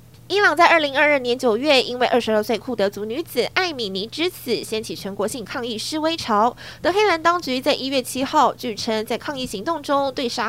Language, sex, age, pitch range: Chinese, female, 20-39, 225-320 Hz